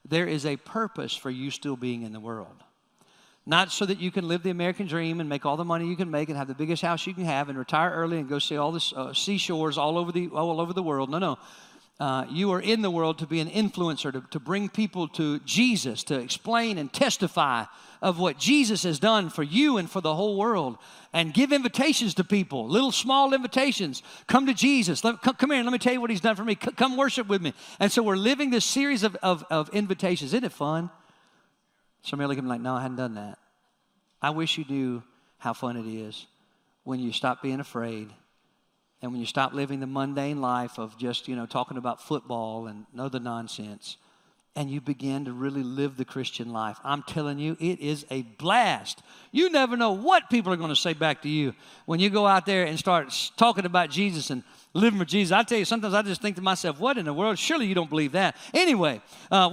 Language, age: English, 50-69